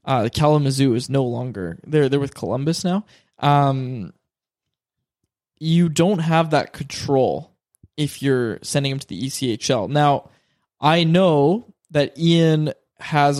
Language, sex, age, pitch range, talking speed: English, male, 20-39, 130-160 Hz, 130 wpm